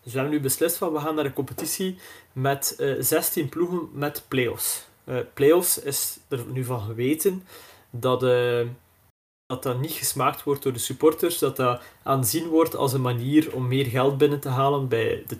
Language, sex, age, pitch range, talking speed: Dutch, male, 20-39, 130-155 Hz, 190 wpm